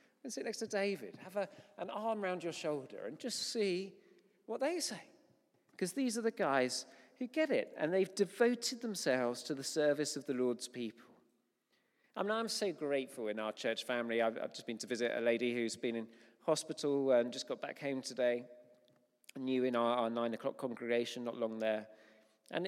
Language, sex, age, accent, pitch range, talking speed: English, male, 40-59, British, 125-180 Hz, 190 wpm